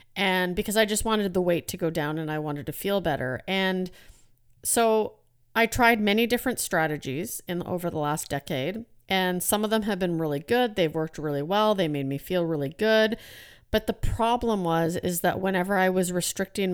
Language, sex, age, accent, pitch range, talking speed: English, female, 40-59, American, 155-200 Hz, 200 wpm